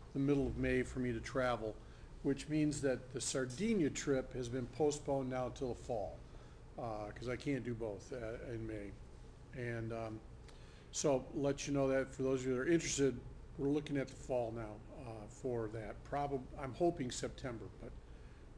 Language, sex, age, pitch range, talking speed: English, male, 50-69, 120-150 Hz, 190 wpm